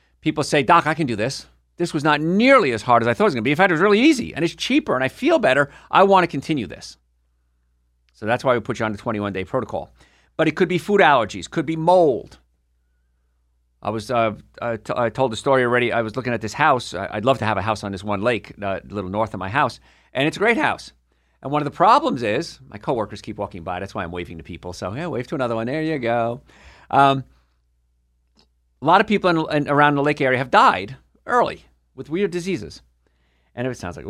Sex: male